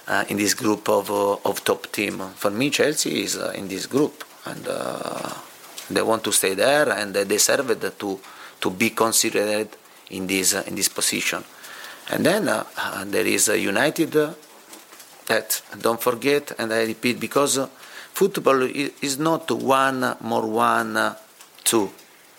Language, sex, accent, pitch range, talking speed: English, male, Italian, 110-135 Hz, 165 wpm